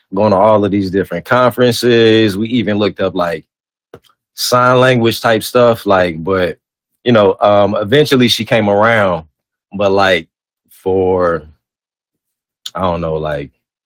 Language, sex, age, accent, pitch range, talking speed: English, male, 30-49, American, 90-110 Hz, 140 wpm